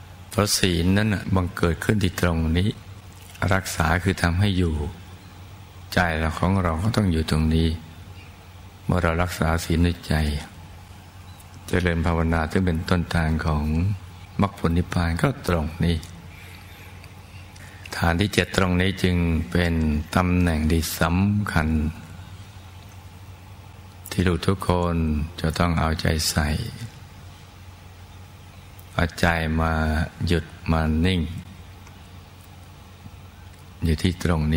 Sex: male